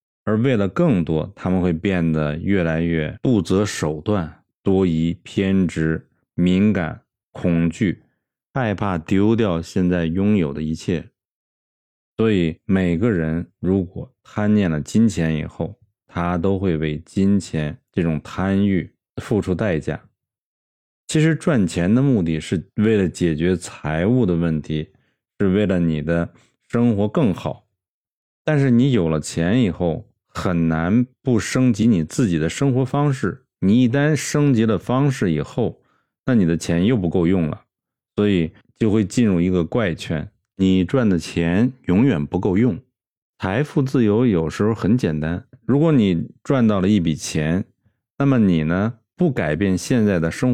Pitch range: 85-120 Hz